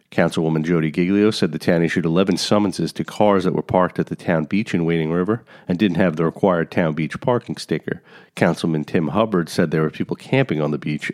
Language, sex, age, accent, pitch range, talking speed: English, male, 40-59, American, 85-110 Hz, 220 wpm